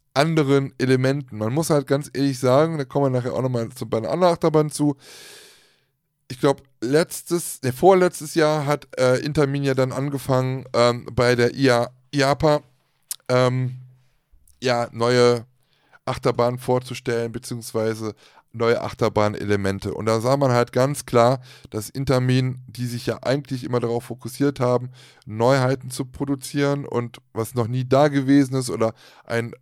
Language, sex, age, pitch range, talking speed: German, male, 20-39, 120-140 Hz, 150 wpm